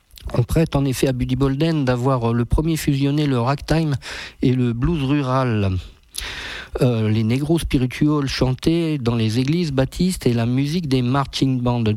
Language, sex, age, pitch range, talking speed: French, male, 50-69, 115-145 Hz, 160 wpm